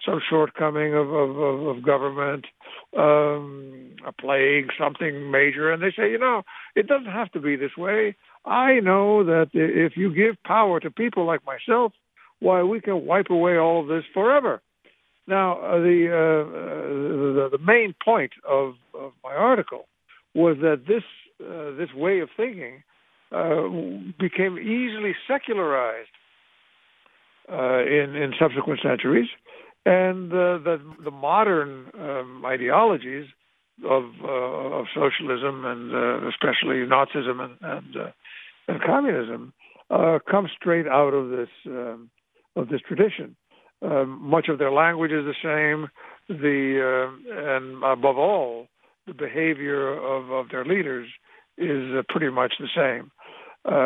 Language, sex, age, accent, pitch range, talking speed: English, male, 60-79, American, 135-180 Hz, 145 wpm